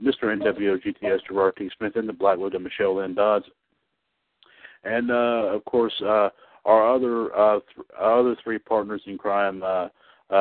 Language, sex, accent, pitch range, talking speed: English, male, American, 100-115 Hz, 165 wpm